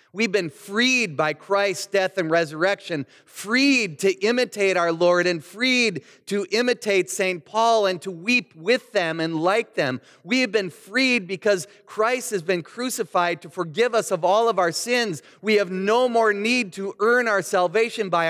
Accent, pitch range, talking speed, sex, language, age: American, 155-205 Hz, 175 wpm, male, English, 30-49